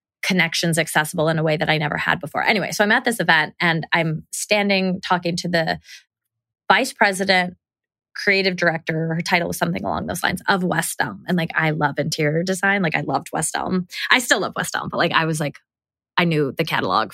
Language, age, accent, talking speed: English, 20-39, American, 215 wpm